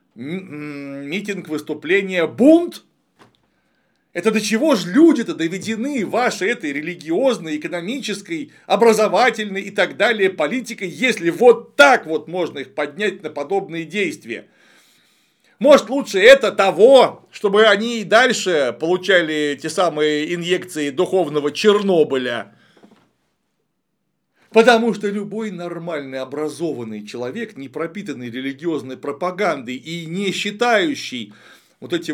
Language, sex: Russian, male